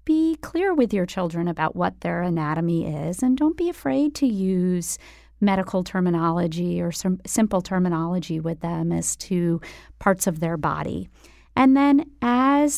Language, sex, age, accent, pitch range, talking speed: English, female, 30-49, American, 175-225 Hz, 155 wpm